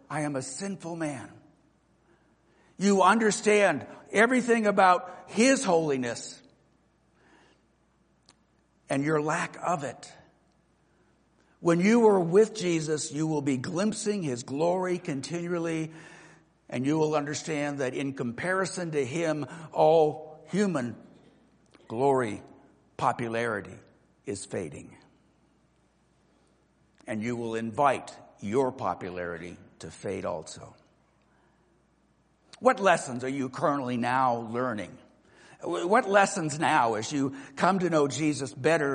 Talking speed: 105 wpm